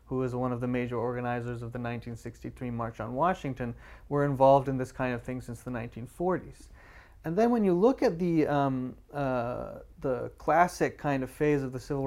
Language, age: English, 30-49